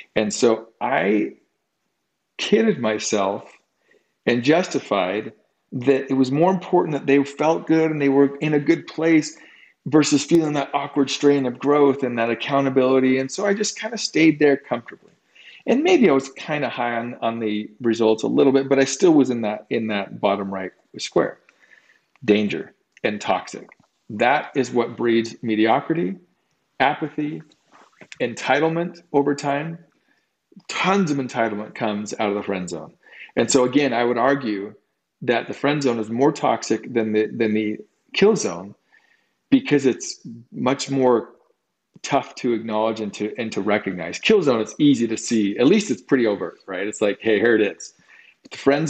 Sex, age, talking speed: male, 40-59, 170 wpm